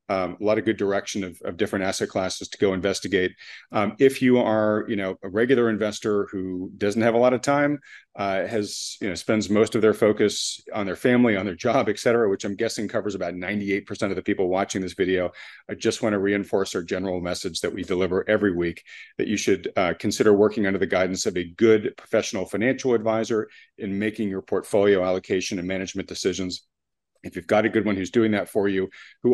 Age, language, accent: 40-59, English, American